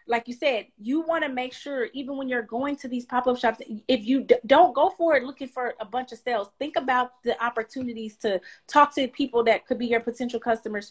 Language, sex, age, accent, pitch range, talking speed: English, female, 30-49, American, 220-260 Hz, 230 wpm